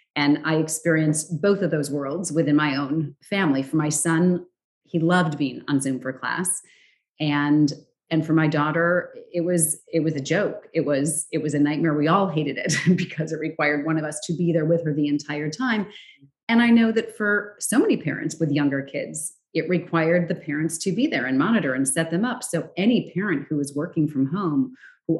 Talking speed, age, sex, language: 210 wpm, 30-49, female, English